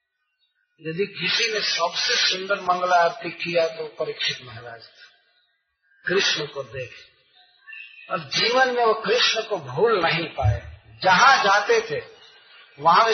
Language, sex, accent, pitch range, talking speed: Hindi, male, native, 170-230 Hz, 130 wpm